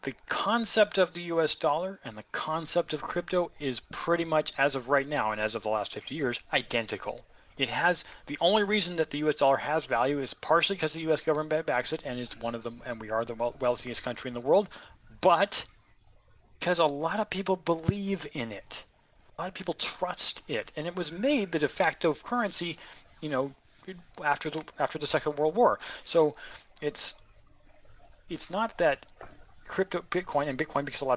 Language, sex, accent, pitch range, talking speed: English, male, American, 130-175 Hz, 200 wpm